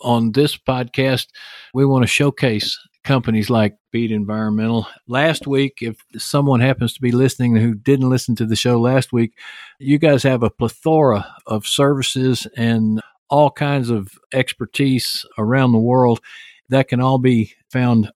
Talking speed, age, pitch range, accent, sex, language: 155 wpm, 50-69, 115-140 Hz, American, male, English